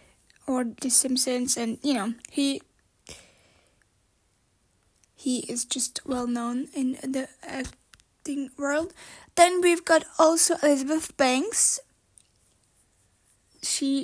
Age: 20-39